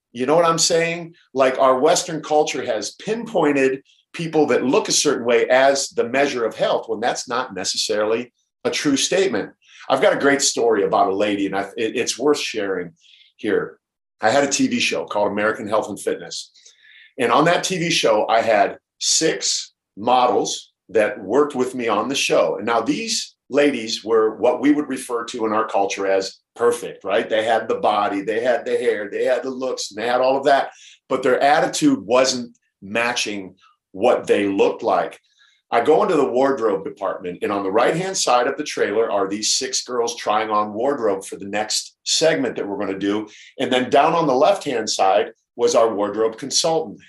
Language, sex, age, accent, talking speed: English, male, 50-69, American, 190 wpm